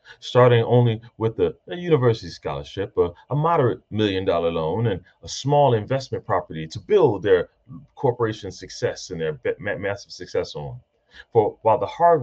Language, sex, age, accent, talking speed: English, male, 30-49, American, 155 wpm